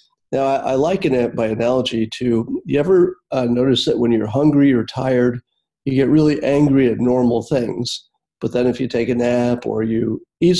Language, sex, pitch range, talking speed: English, male, 120-145 Hz, 190 wpm